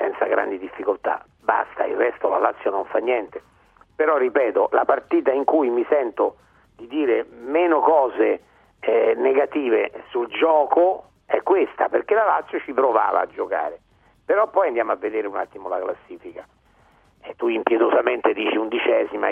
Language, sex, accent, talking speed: Italian, male, native, 155 wpm